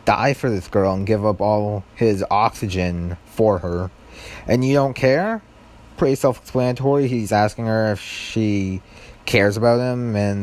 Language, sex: English, male